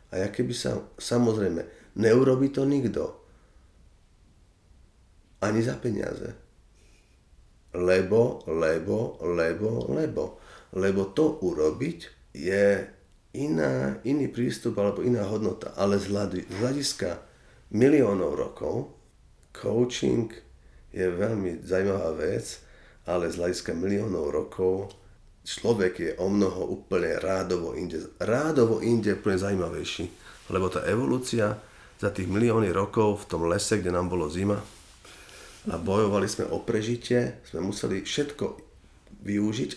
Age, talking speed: 40-59, 115 wpm